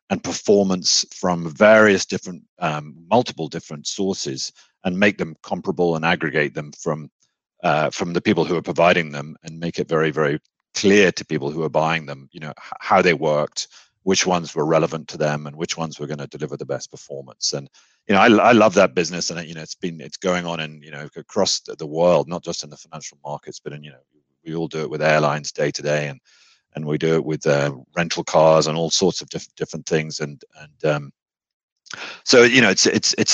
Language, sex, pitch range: English, male, 75-85 Hz